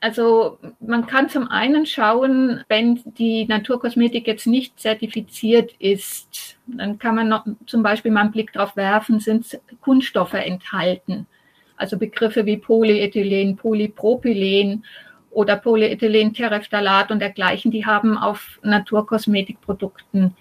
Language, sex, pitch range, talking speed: German, female, 195-230 Hz, 115 wpm